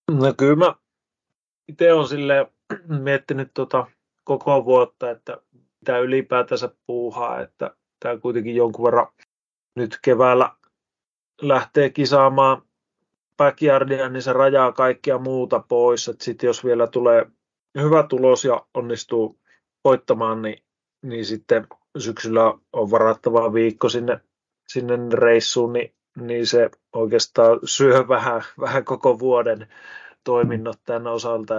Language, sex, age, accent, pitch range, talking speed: Finnish, male, 30-49, native, 115-135 Hz, 115 wpm